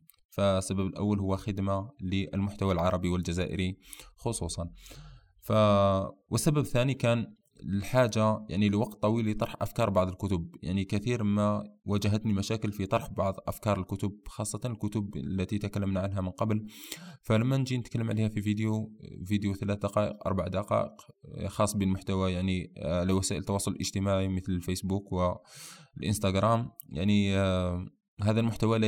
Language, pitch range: Arabic, 95-110 Hz